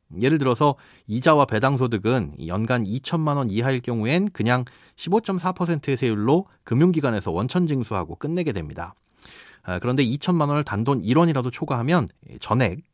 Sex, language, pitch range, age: male, Korean, 110-165 Hz, 30-49